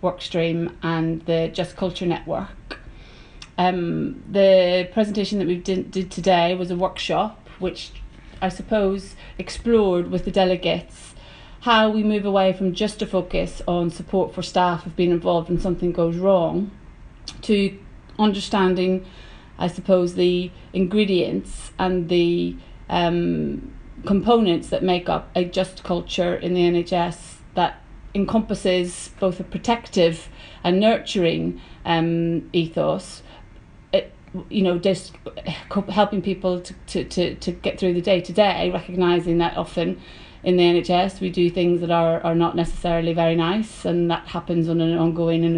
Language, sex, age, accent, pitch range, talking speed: English, female, 30-49, British, 170-190 Hz, 140 wpm